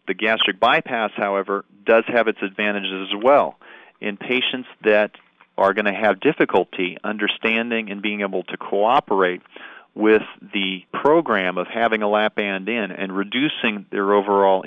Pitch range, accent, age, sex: 95-115 Hz, American, 40-59, male